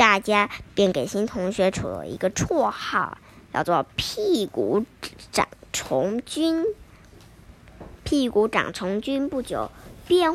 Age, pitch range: 10-29, 215-290 Hz